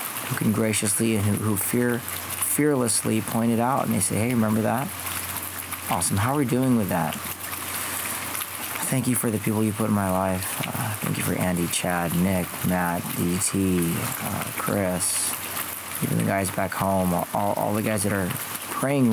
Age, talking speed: 40-59, 175 wpm